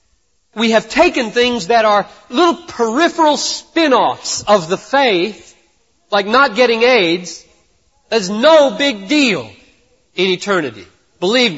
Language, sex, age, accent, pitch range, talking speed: English, male, 40-59, American, 185-255 Hz, 120 wpm